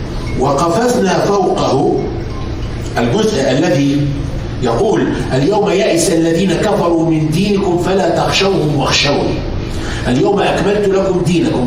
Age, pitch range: 50-69, 120-180 Hz